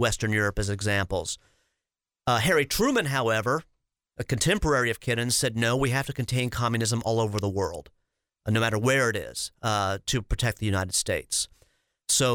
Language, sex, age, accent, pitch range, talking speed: English, male, 40-59, American, 110-140 Hz, 170 wpm